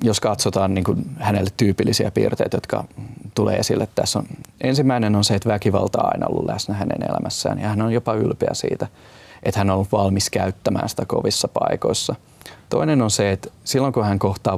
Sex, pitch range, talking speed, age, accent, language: male, 95-115 Hz, 190 wpm, 30-49, native, Finnish